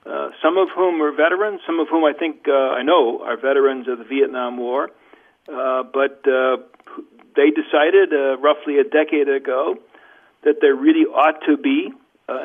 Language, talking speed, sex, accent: English, 180 wpm, male, American